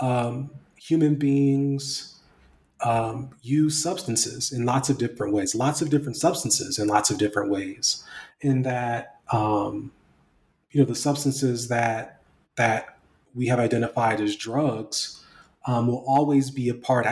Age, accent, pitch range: 30-49, American, 110-135 Hz